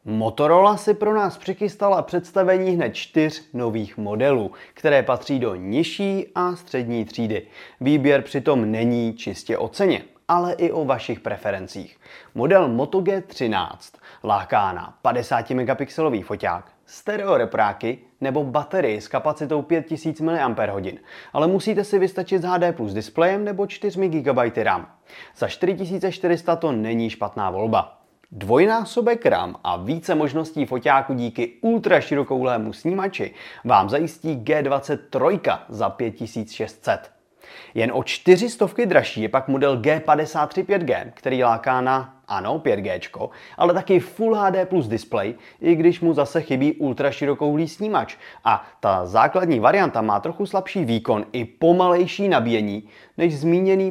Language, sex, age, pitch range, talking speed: Czech, male, 30-49, 125-185 Hz, 130 wpm